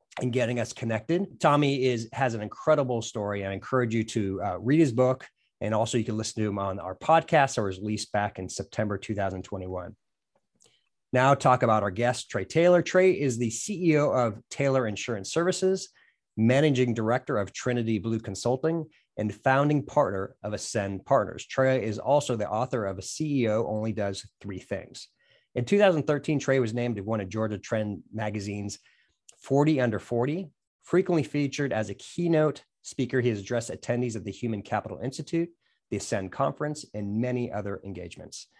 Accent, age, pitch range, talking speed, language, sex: American, 30-49, 110-140 Hz, 170 wpm, English, male